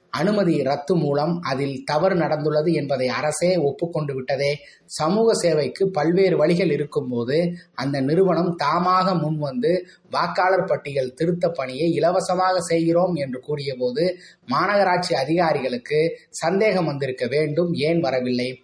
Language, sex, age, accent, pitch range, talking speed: Tamil, male, 20-39, native, 135-175 Hz, 115 wpm